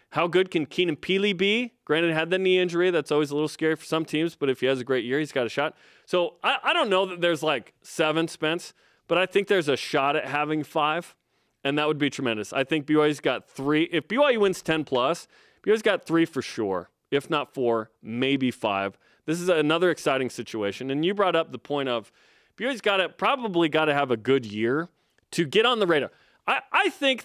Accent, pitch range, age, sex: American, 130-180 Hz, 30-49, male